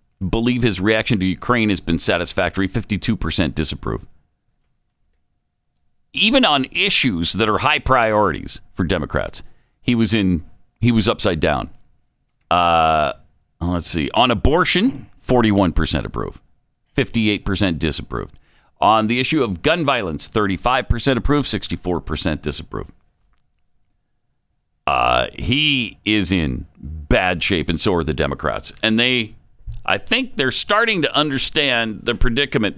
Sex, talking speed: male, 130 wpm